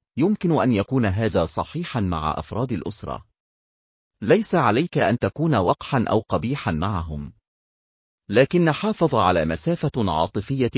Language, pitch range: Arabic, 90-135 Hz